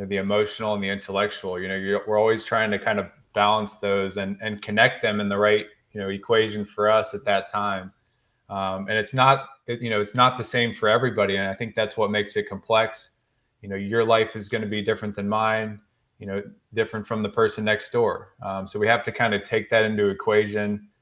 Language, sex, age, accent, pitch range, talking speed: English, male, 20-39, American, 100-110 Hz, 230 wpm